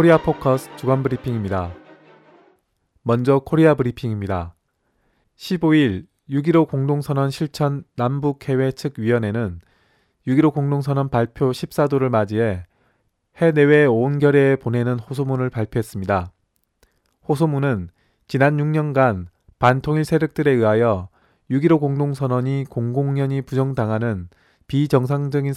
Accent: native